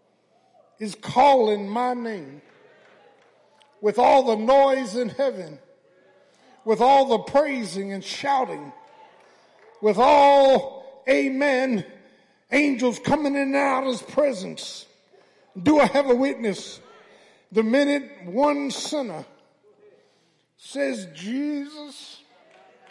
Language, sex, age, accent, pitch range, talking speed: English, male, 50-69, American, 225-285 Hz, 100 wpm